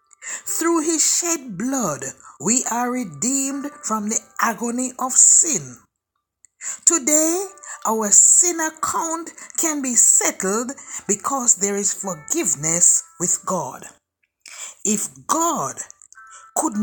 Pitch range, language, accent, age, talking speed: 205-320 Hz, English, Nigerian, 60-79, 100 wpm